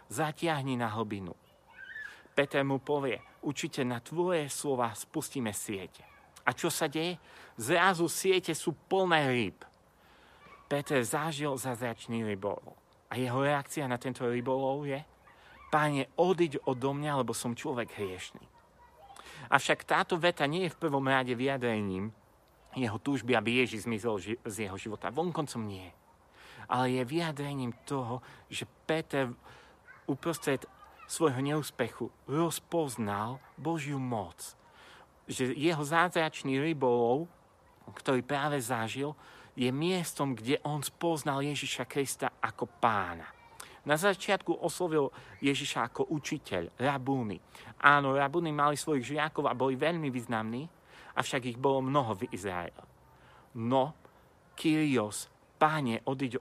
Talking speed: 120 wpm